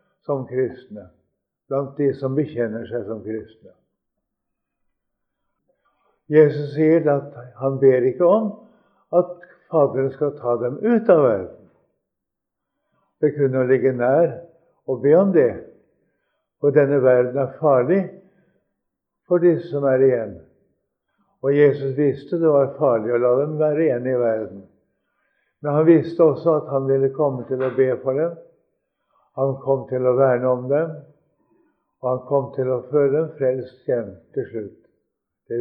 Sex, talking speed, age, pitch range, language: male, 150 wpm, 60-79, 120-155 Hz, English